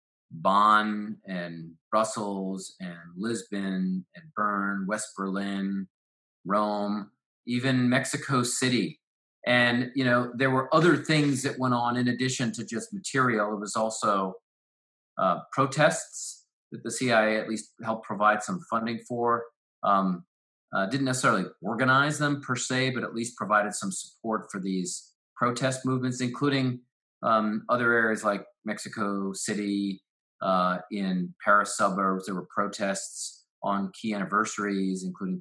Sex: male